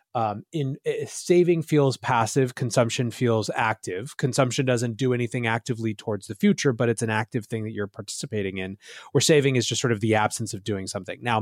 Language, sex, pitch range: English, male, 110-140 Hz